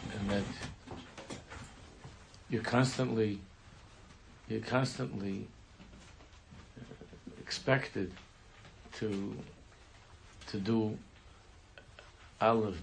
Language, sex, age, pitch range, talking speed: English, male, 60-79, 90-115 Hz, 50 wpm